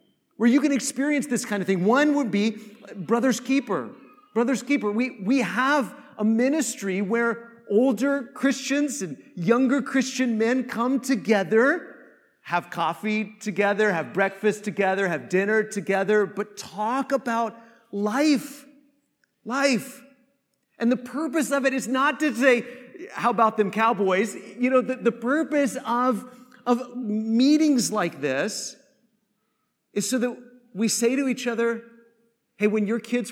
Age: 40-59